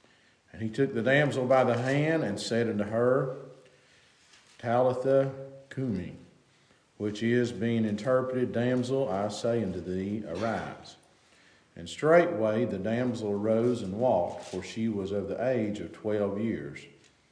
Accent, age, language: American, 50-69, English